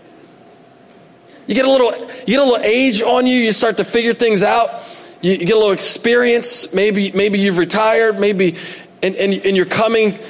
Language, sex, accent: English, male, American